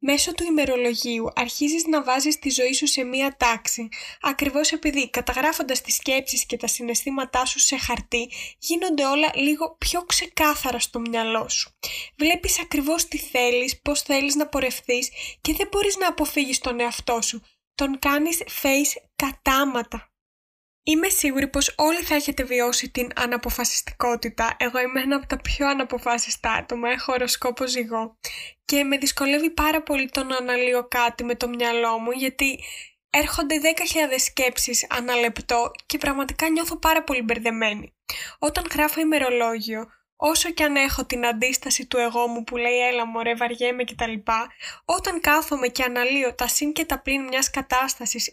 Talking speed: 155 wpm